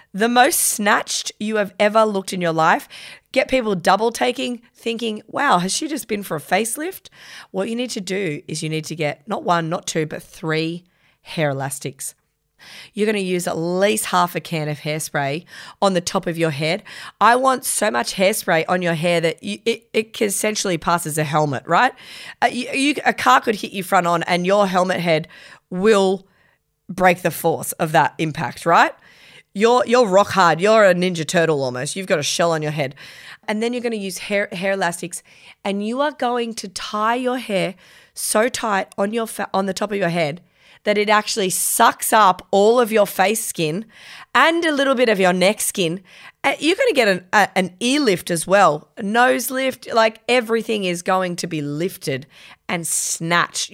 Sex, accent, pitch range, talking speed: female, Australian, 170-225 Hz, 205 wpm